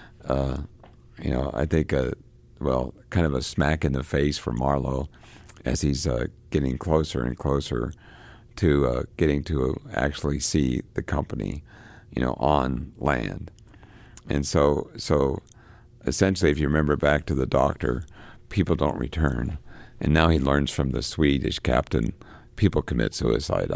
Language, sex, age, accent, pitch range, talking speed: English, male, 60-79, American, 65-85 Hz, 150 wpm